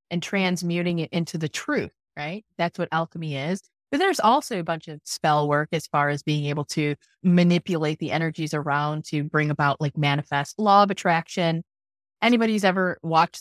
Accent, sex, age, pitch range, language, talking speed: American, female, 30-49, 160-210 Hz, English, 180 wpm